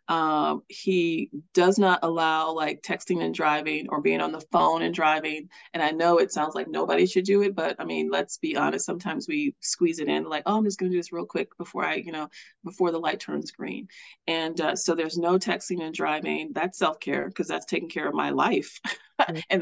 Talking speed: 225 wpm